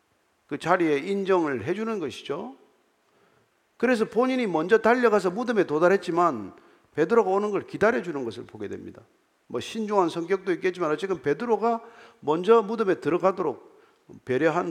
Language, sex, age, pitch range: Korean, male, 50-69, 175-250 Hz